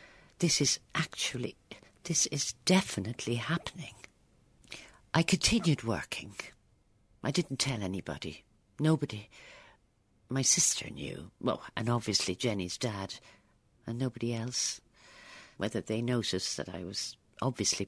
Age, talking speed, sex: 50-69, 110 wpm, female